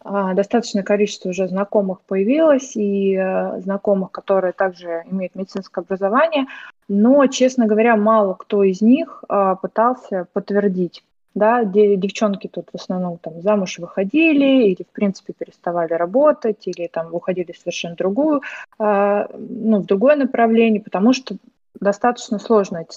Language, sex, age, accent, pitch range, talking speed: Russian, female, 20-39, native, 190-225 Hz, 130 wpm